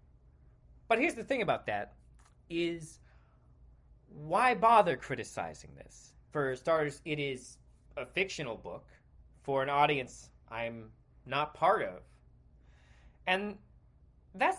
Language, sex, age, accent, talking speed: English, male, 30-49, American, 110 wpm